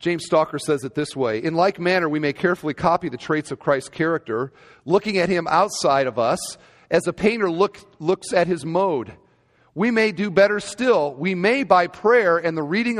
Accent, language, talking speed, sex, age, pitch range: American, English, 200 wpm, male, 40-59, 145-195 Hz